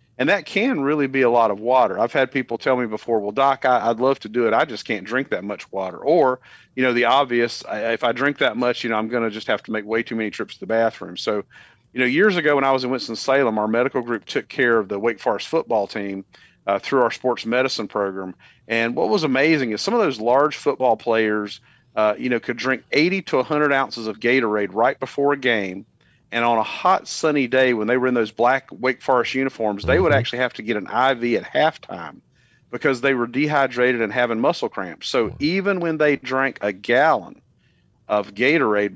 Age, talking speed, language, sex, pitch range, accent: 40-59, 230 wpm, English, male, 110-135 Hz, American